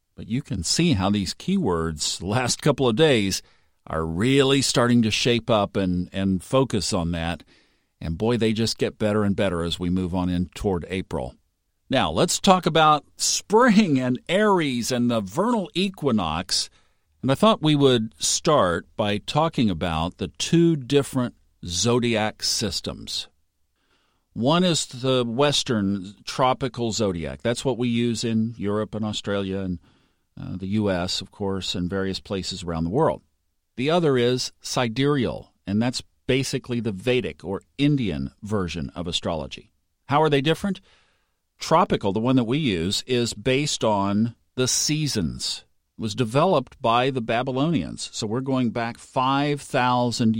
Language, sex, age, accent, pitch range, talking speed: English, male, 50-69, American, 90-130 Hz, 150 wpm